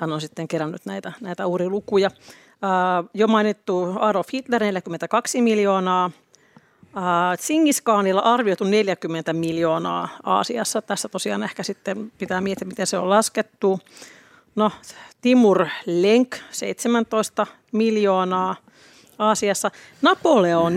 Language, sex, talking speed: Finnish, female, 105 wpm